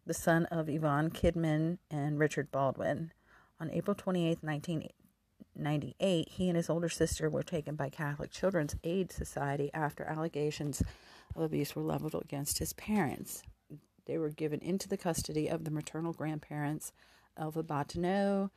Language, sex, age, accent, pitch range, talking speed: English, female, 40-59, American, 150-170 Hz, 145 wpm